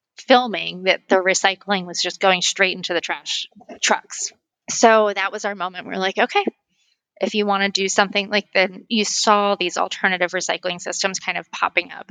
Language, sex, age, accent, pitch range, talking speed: English, female, 30-49, American, 185-215 Hz, 190 wpm